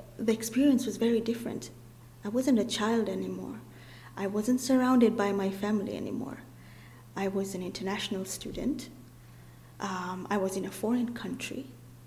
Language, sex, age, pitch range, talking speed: English, female, 30-49, 185-230 Hz, 145 wpm